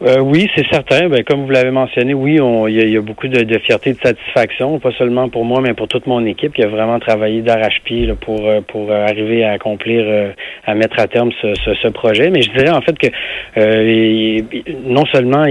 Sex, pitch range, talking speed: male, 110-125 Hz, 225 wpm